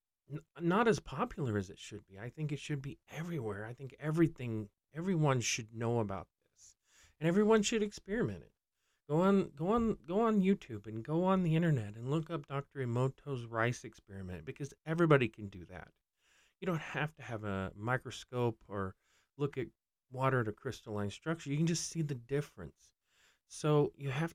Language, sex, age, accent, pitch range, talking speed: English, male, 40-59, American, 110-150 Hz, 180 wpm